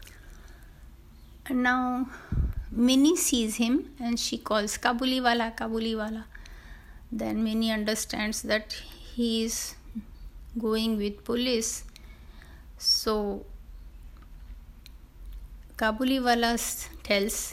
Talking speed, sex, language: 70 wpm, female, Hindi